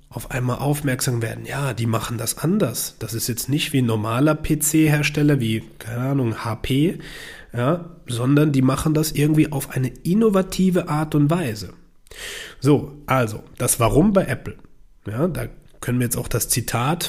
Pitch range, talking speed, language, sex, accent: 120-155 Hz, 165 wpm, German, male, German